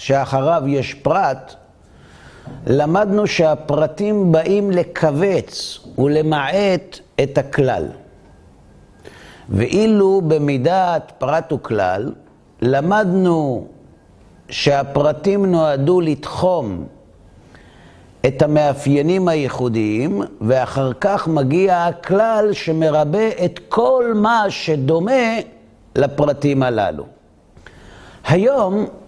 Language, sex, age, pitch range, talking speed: Hebrew, male, 50-69, 110-180 Hz, 70 wpm